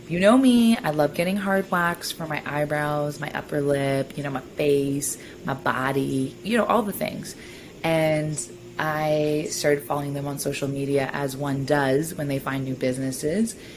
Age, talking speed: 20-39, 180 wpm